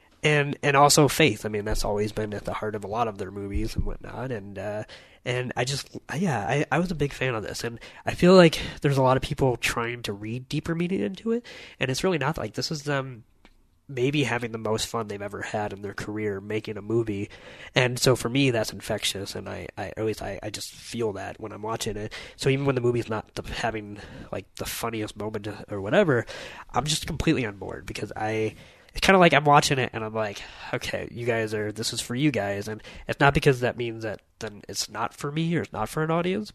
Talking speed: 245 wpm